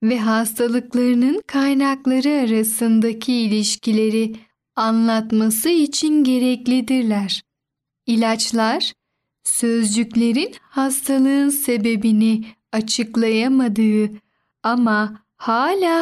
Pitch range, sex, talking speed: 220-275 Hz, female, 55 wpm